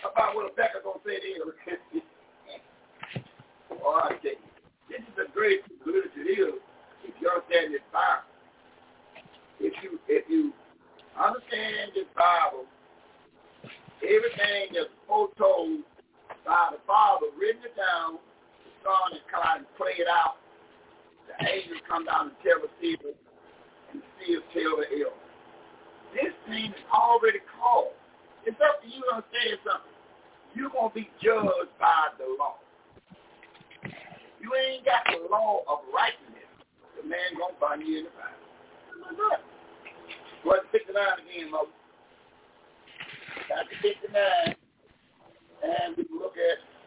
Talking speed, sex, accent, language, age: 135 wpm, male, American, English, 50-69